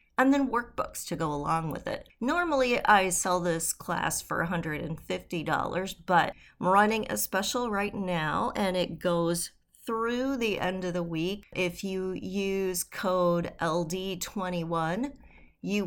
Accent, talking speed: American, 140 wpm